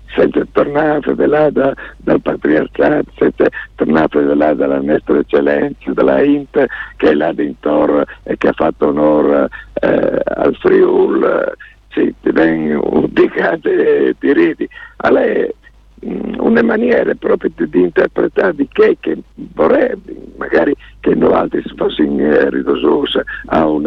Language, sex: Italian, male